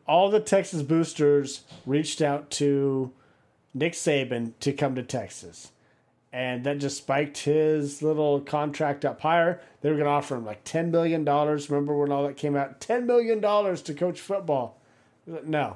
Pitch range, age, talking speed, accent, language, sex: 140-165 Hz, 40-59, 165 wpm, American, English, male